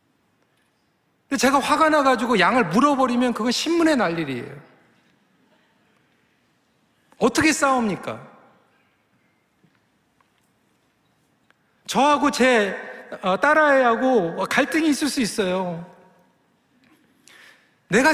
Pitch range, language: 205-290 Hz, Korean